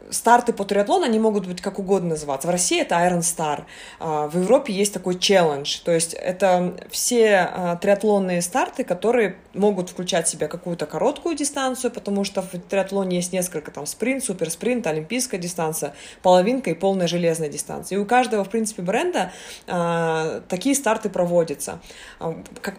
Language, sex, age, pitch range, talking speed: Russian, female, 20-39, 175-210 Hz, 155 wpm